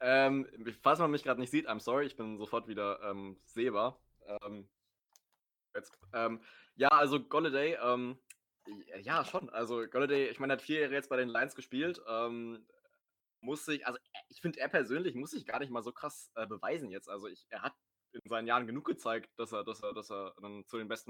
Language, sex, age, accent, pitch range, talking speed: German, male, 20-39, German, 110-130 Hz, 210 wpm